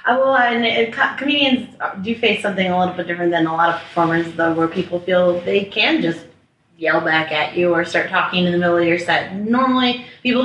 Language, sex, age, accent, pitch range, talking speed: English, female, 30-49, American, 165-225 Hz, 205 wpm